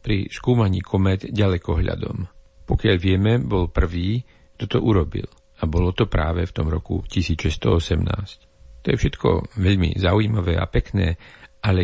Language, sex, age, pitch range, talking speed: Slovak, male, 50-69, 85-110 Hz, 135 wpm